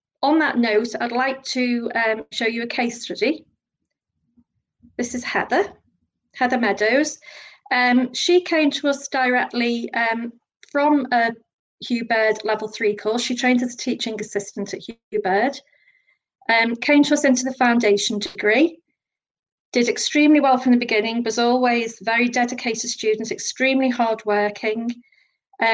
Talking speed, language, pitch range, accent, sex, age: 140 wpm, English, 220-260 Hz, British, female, 40-59